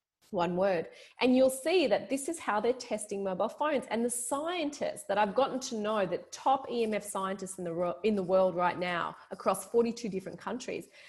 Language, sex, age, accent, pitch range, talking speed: English, female, 30-49, Australian, 185-255 Hz, 205 wpm